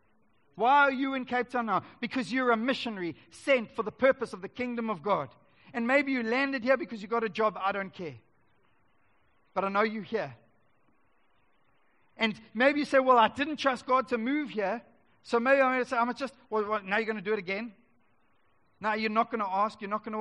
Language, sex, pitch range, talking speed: English, male, 195-250 Hz, 230 wpm